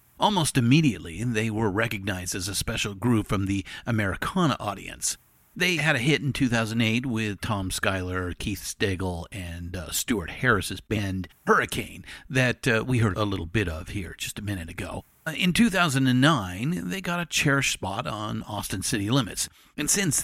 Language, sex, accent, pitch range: English, male, American, 95-135 Hz